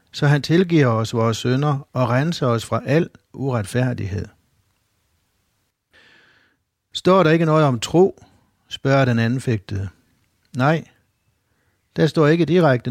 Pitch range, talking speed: 105-145 Hz, 120 wpm